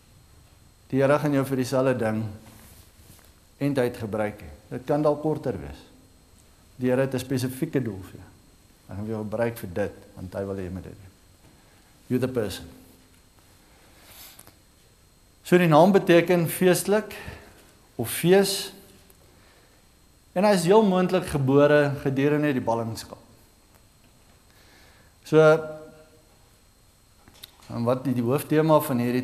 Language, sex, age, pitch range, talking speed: English, male, 60-79, 95-140 Hz, 130 wpm